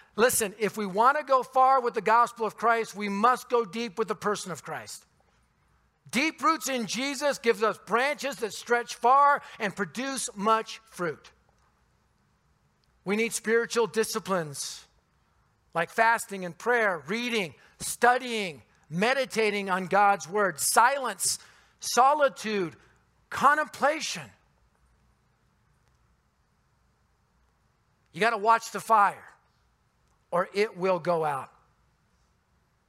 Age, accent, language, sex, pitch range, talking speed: 50-69, American, English, male, 185-230 Hz, 115 wpm